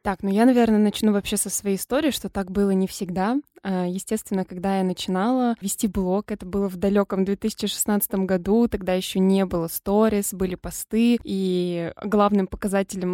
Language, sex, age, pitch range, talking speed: Russian, female, 20-39, 195-230 Hz, 165 wpm